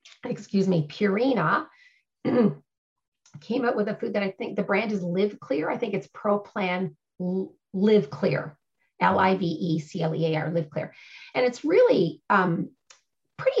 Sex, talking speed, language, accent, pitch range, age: female, 135 wpm, English, American, 170-225 Hz, 40-59